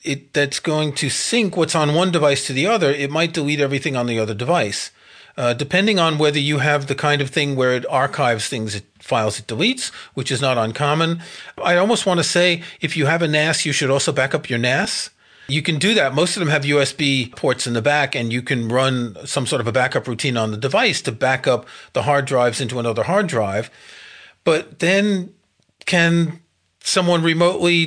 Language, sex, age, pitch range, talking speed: English, male, 40-59, 130-170 Hz, 215 wpm